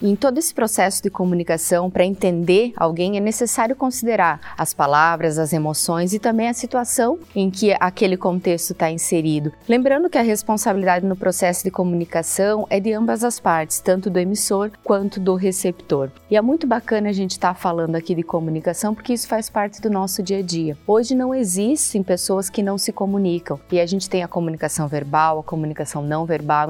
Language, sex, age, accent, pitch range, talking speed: Portuguese, female, 30-49, Brazilian, 180-220 Hz, 190 wpm